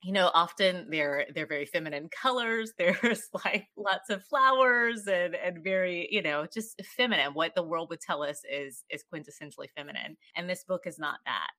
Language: English